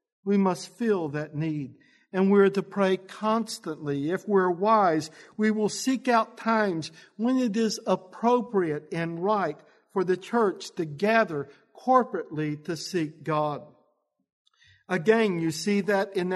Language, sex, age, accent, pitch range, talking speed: English, male, 50-69, American, 160-215 Hz, 140 wpm